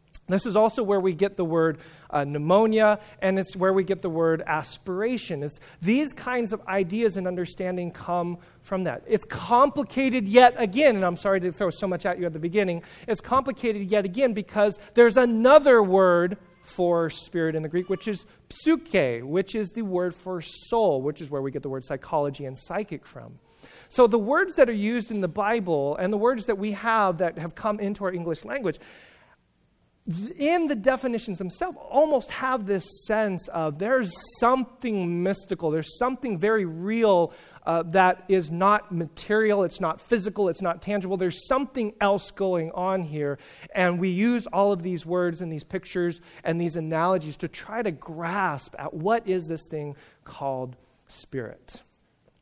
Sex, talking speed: male, 180 wpm